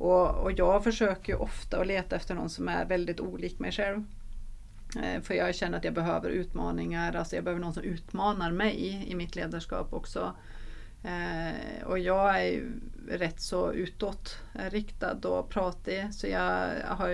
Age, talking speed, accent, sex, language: 30-49, 170 wpm, native, female, Swedish